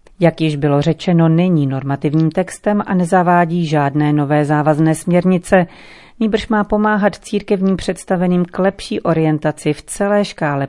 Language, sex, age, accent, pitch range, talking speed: Czech, female, 40-59, native, 150-180 Hz, 135 wpm